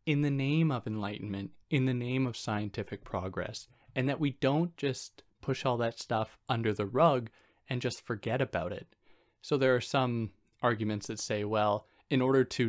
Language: English